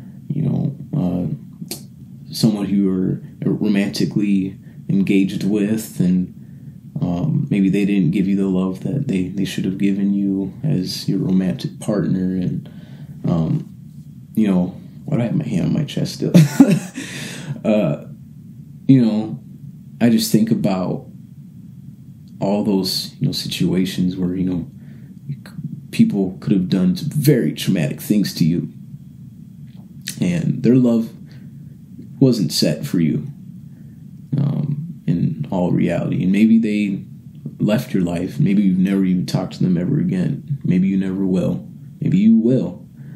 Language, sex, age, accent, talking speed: English, male, 30-49, American, 140 wpm